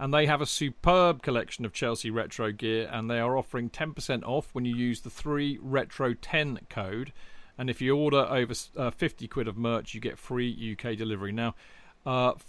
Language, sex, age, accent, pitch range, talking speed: English, male, 40-59, British, 115-140 Hz, 195 wpm